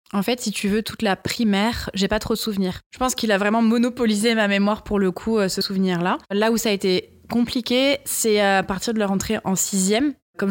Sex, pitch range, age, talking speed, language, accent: female, 180-220 Hz, 20-39, 235 wpm, French, French